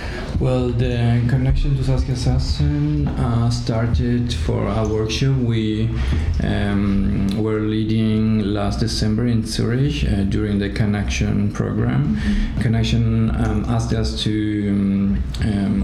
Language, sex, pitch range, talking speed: Ukrainian, male, 105-115 Hz, 115 wpm